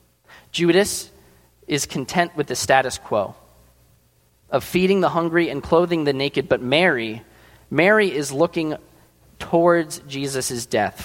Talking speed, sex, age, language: 125 wpm, male, 20-39, English